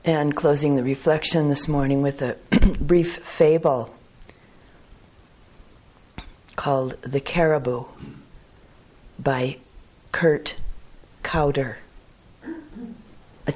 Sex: female